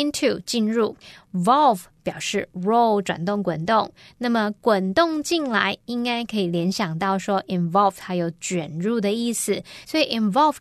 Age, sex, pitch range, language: 20-39, female, 185-250 Hz, Chinese